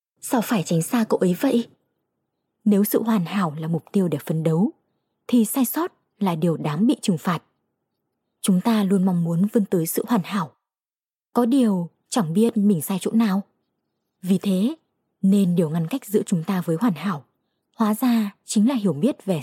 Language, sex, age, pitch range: Vietnamese, female, 20-39, 180-235 Hz